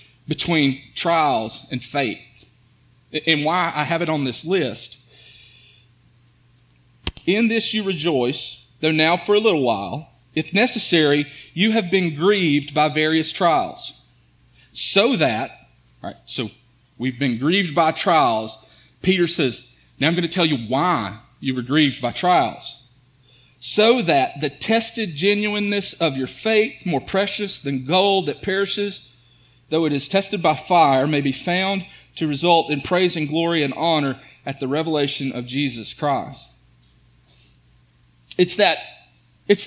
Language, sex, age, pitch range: English, male, 40-59, 130-190 Hz